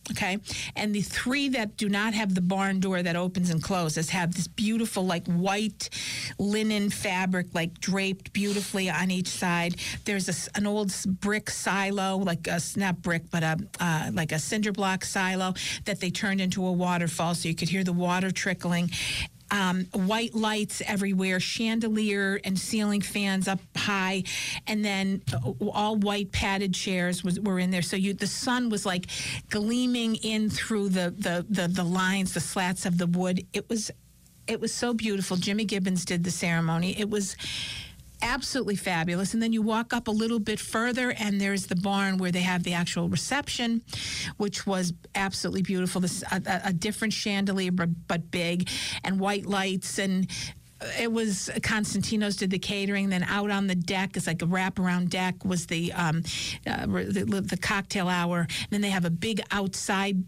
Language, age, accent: English, 50-69, American